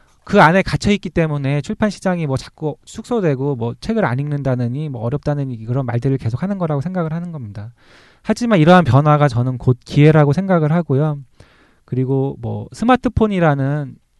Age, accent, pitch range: 20-39, native, 130-180 Hz